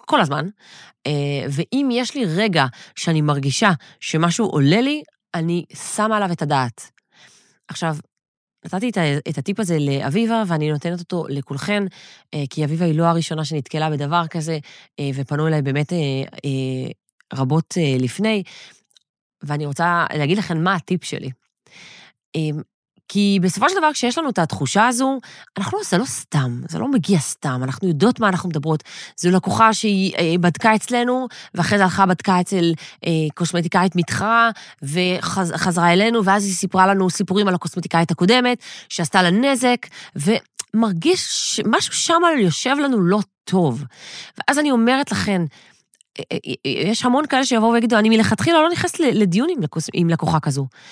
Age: 30-49